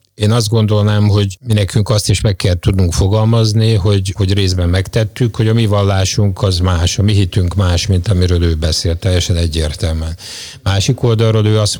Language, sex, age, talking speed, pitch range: Hungarian, male, 50-69, 185 wpm, 95-110 Hz